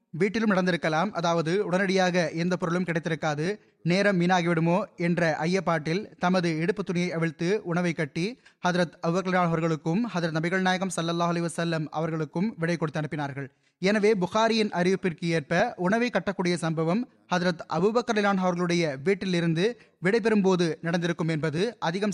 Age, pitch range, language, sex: 20-39, 170-205 Hz, Tamil, male